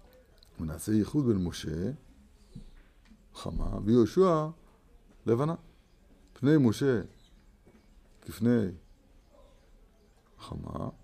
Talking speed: 60 wpm